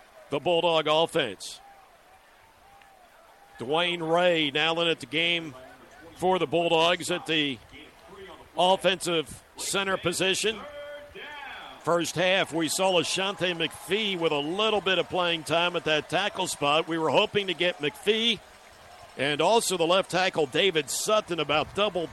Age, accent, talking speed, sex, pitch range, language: 60-79, American, 135 wpm, male, 165-230 Hz, English